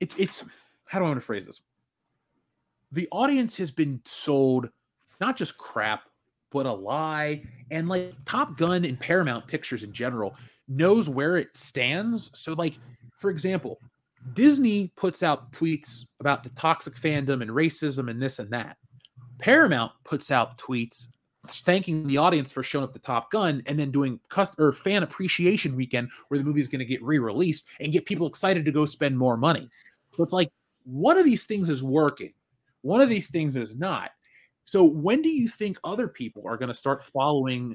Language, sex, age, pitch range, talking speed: English, male, 30-49, 130-170 Hz, 185 wpm